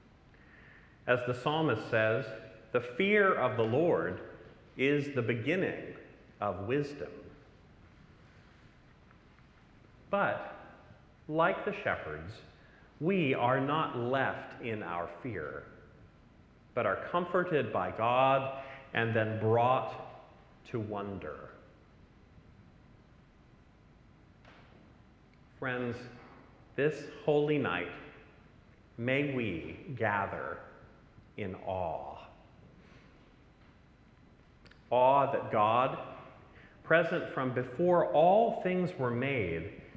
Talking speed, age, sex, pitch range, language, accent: 80 wpm, 40-59, male, 115-150 Hz, English, American